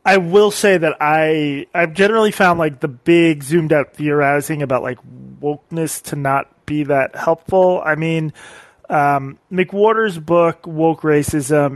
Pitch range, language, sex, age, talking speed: 145-170 Hz, English, male, 30-49, 145 wpm